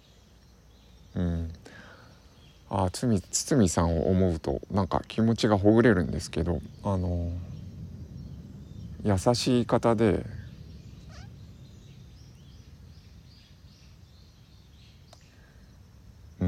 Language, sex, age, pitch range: Japanese, male, 50-69, 85-110 Hz